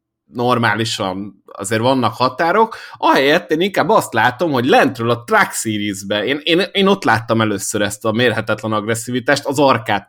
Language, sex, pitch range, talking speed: Hungarian, male, 105-135 Hz, 155 wpm